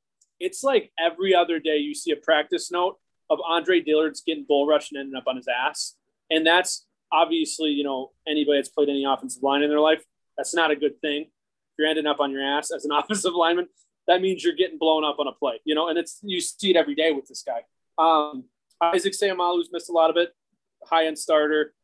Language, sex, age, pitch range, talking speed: English, male, 20-39, 145-180 Hz, 235 wpm